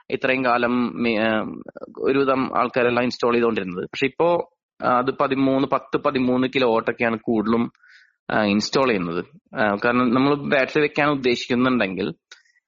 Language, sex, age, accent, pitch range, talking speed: Malayalam, male, 30-49, native, 125-155 Hz, 105 wpm